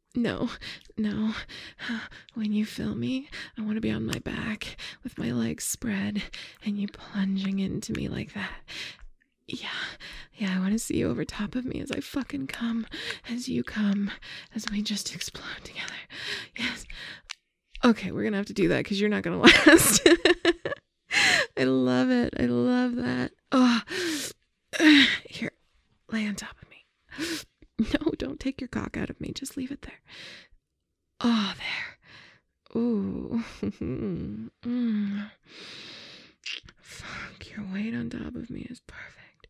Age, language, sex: 20-39, English, female